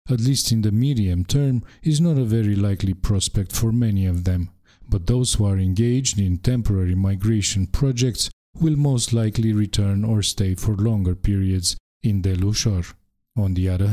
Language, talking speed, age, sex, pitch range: English, 170 wpm, 50-69, male, 95-125 Hz